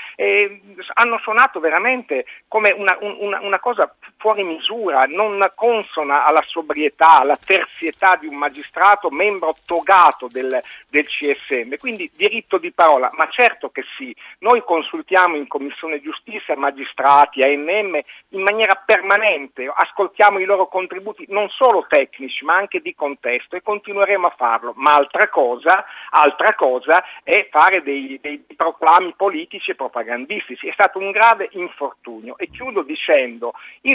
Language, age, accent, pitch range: Italian, 50-69, native, 155-225 Hz